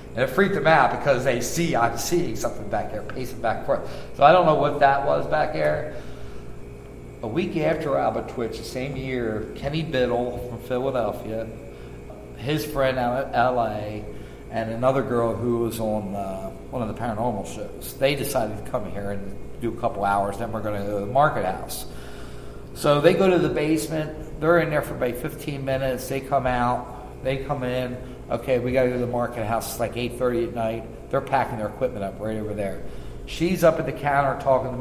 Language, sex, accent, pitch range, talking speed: English, male, American, 105-135 Hz, 210 wpm